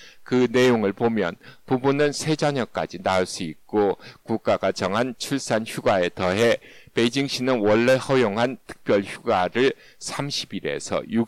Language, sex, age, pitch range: Korean, male, 60-79, 105-130 Hz